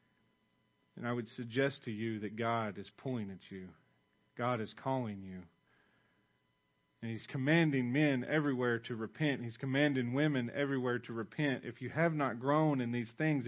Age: 40-59